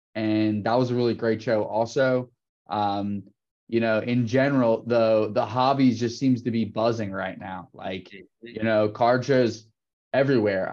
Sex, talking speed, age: male, 160 wpm, 20-39